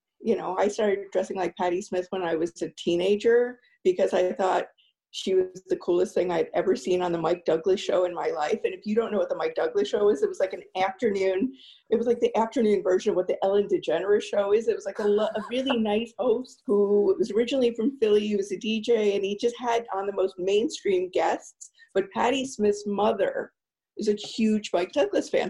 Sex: female